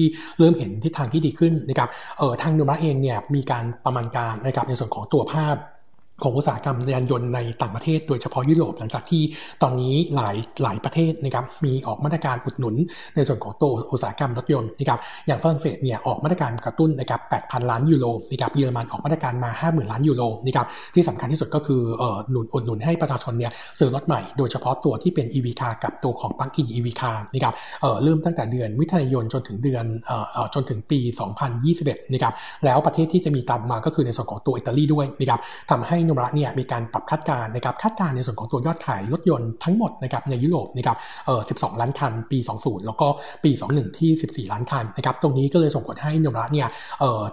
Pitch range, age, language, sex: 120-155 Hz, 60-79, Thai, male